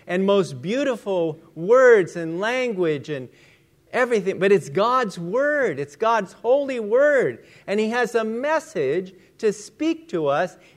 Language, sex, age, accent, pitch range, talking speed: English, male, 50-69, American, 160-230 Hz, 140 wpm